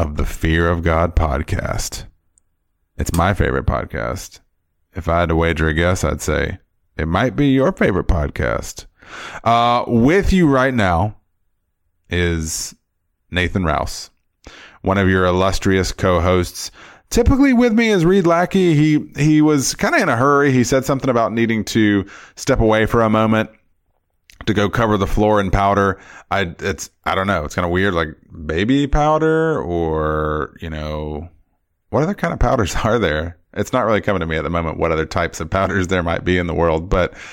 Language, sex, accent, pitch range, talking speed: English, male, American, 85-110 Hz, 180 wpm